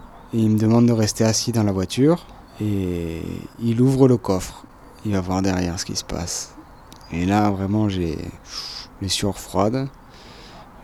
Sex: male